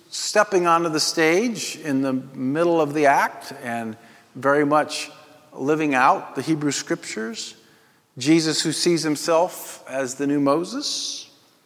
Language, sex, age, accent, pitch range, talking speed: English, male, 50-69, American, 135-170 Hz, 135 wpm